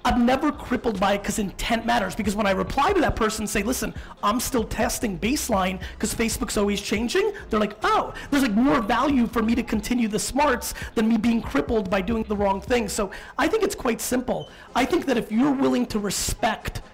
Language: English